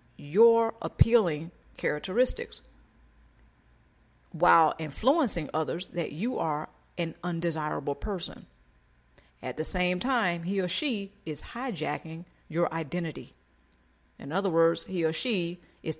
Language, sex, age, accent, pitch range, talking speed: English, female, 40-59, American, 150-200 Hz, 115 wpm